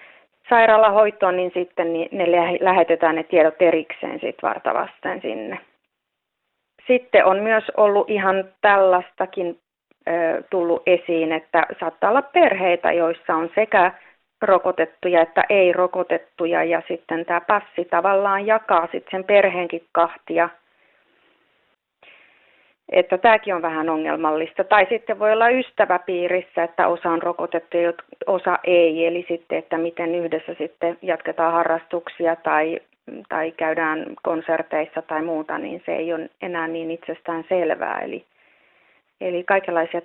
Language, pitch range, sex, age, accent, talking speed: Finnish, 165-200 Hz, female, 30-49, native, 120 wpm